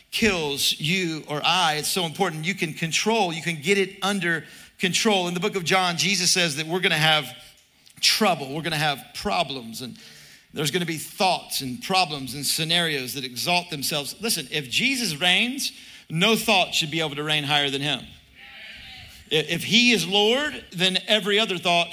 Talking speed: 190 wpm